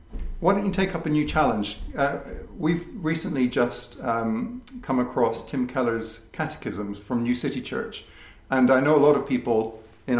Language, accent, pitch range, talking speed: English, British, 115-145 Hz, 175 wpm